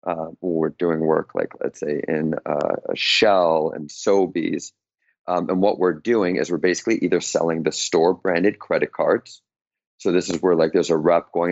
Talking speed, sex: 195 wpm, male